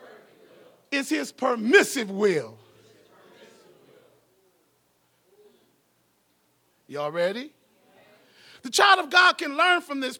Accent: American